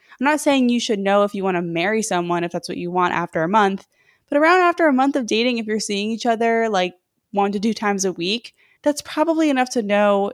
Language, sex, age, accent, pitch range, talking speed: English, female, 20-39, American, 190-240 Hz, 255 wpm